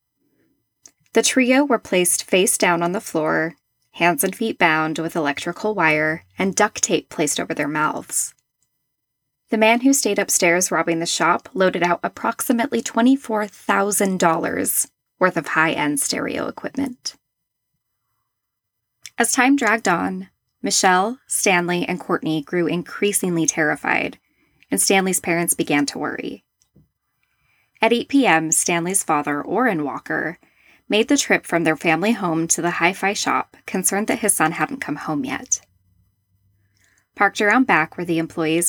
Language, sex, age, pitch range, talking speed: English, female, 10-29, 155-210 Hz, 140 wpm